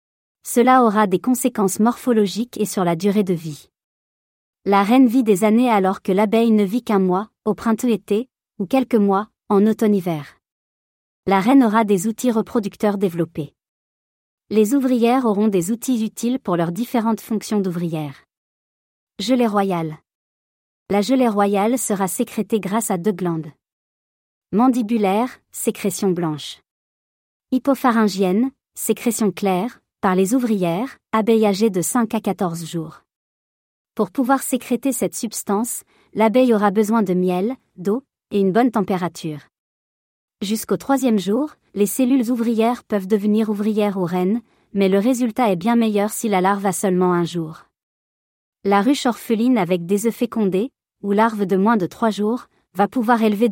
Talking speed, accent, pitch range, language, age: 145 wpm, French, 190-235 Hz, French, 40-59